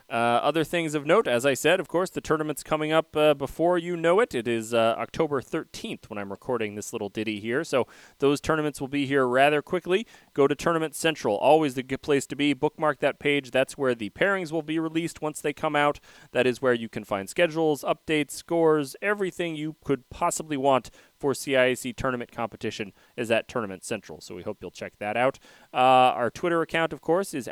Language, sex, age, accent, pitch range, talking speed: English, male, 30-49, American, 115-155 Hz, 215 wpm